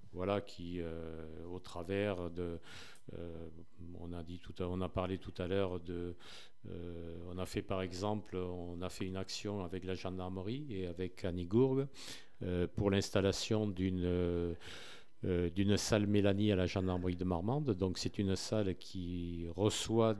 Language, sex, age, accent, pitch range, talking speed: French, male, 50-69, French, 90-105 Hz, 165 wpm